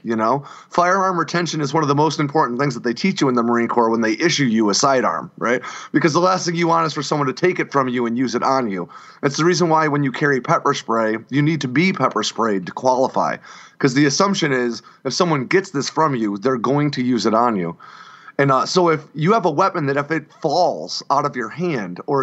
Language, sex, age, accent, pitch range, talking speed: English, male, 30-49, American, 130-165 Hz, 260 wpm